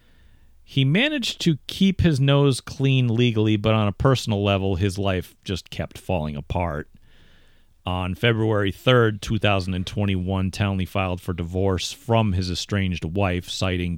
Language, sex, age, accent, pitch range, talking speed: English, male, 40-59, American, 90-125 Hz, 135 wpm